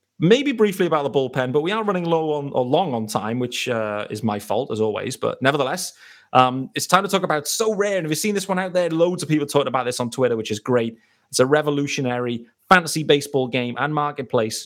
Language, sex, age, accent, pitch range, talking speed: English, male, 30-49, British, 125-155 Hz, 240 wpm